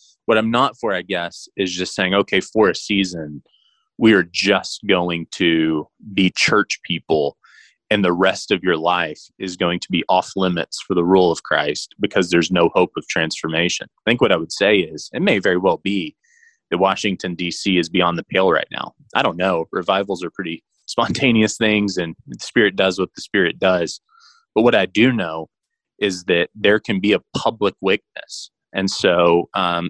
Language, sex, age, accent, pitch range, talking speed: English, male, 20-39, American, 85-105 Hz, 195 wpm